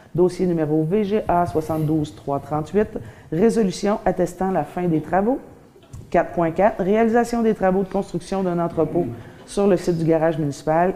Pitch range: 160-205 Hz